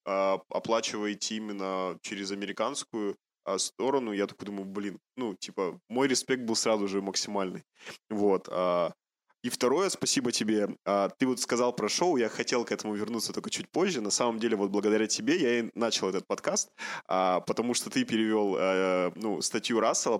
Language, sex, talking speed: Russian, male, 155 wpm